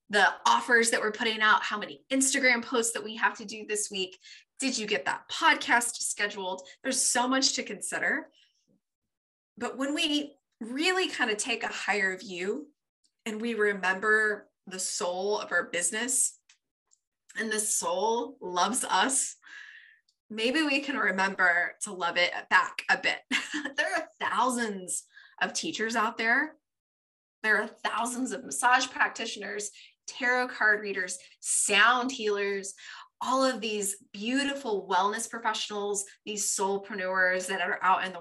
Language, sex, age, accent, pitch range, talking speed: English, female, 20-39, American, 195-255 Hz, 145 wpm